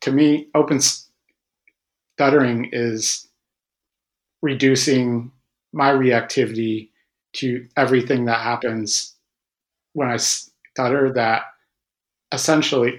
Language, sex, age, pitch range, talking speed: English, male, 40-59, 115-135 Hz, 80 wpm